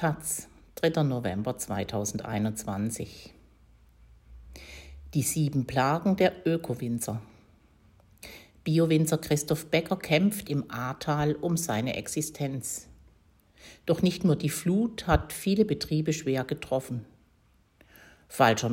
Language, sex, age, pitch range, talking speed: German, female, 60-79, 115-155 Hz, 90 wpm